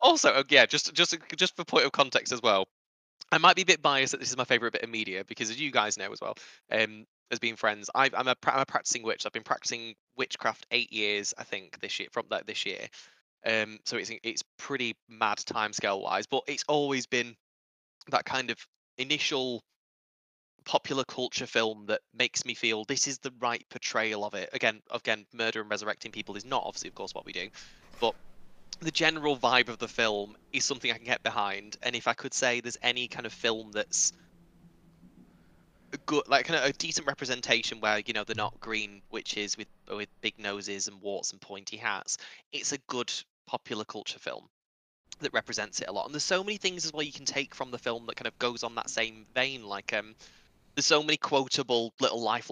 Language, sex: English, male